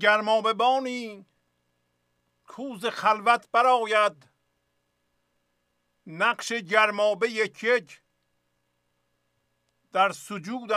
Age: 50-69